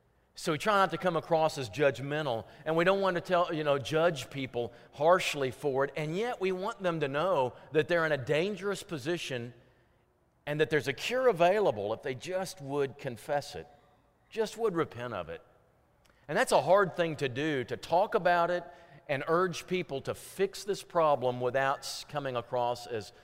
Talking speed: 190 wpm